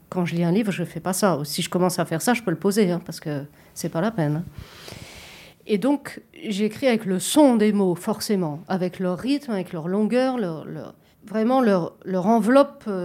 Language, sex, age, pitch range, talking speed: French, female, 50-69, 180-235 Hz, 225 wpm